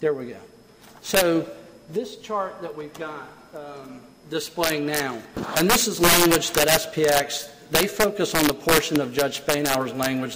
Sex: male